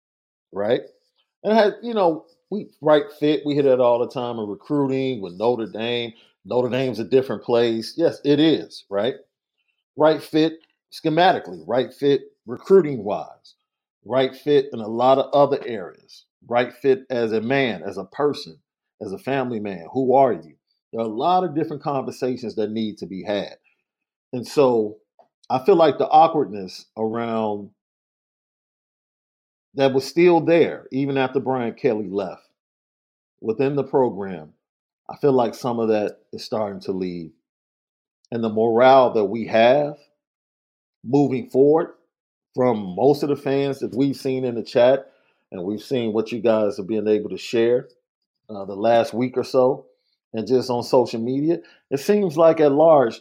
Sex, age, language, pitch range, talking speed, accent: male, 50-69, English, 115-145 Hz, 165 wpm, American